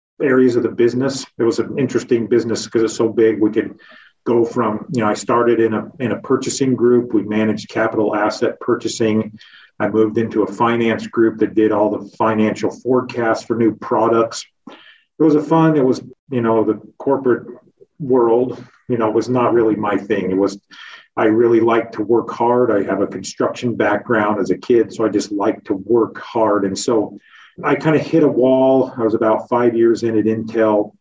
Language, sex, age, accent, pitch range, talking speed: English, male, 40-59, American, 105-120 Hz, 200 wpm